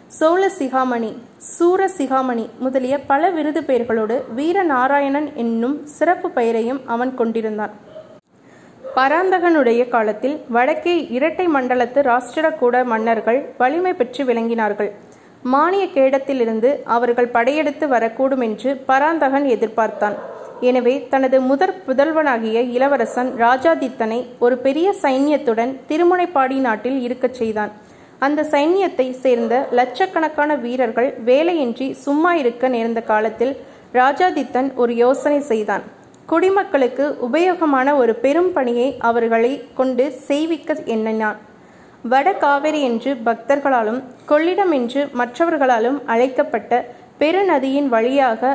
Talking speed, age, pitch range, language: 95 wpm, 20-39, 240-295 Hz, Tamil